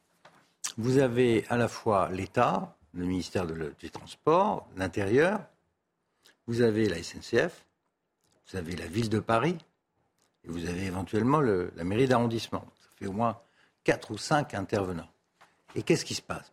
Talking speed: 155 wpm